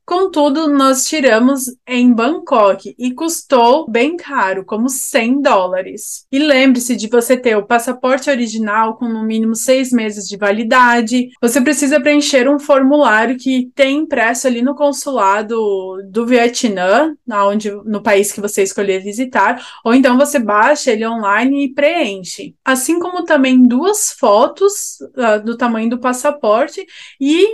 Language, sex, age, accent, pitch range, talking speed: Portuguese, female, 20-39, Brazilian, 235-295 Hz, 145 wpm